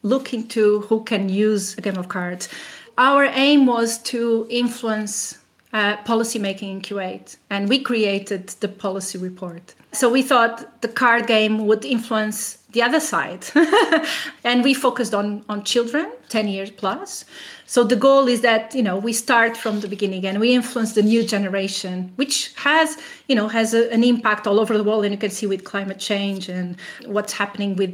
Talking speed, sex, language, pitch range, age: 185 wpm, female, English, 205-245 Hz, 30-49